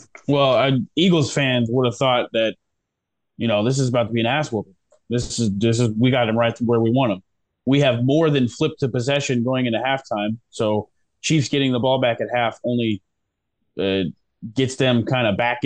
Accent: American